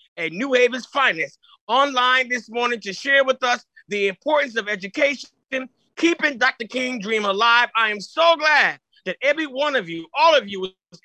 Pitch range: 210-275 Hz